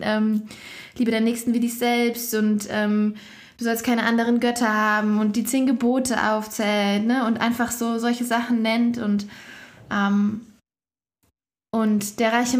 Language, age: German, 20-39